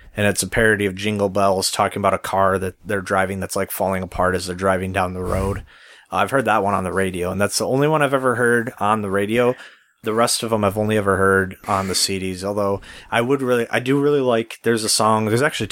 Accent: American